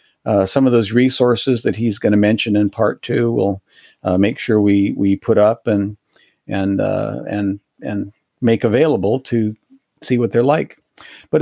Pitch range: 105-125 Hz